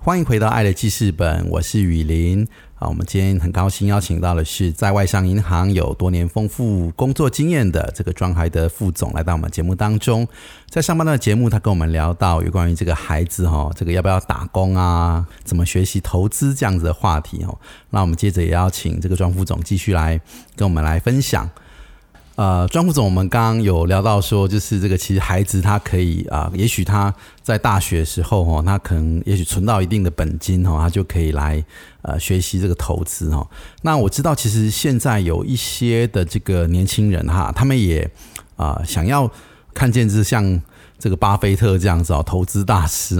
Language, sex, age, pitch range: Chinese, male, 30-49, 85-110 Hz